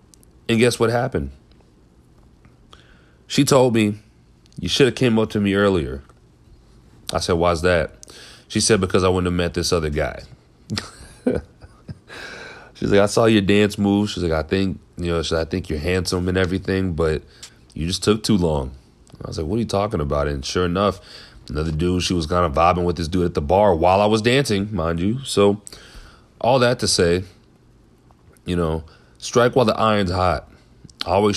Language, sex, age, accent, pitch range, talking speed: English, male, 30-49, American, 80-105 Hz, 185 wpm